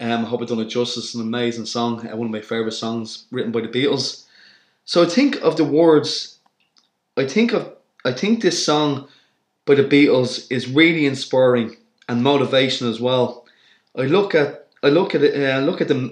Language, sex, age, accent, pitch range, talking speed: English, male, 20-39, Irish, 120-140 Hz, 195 wpm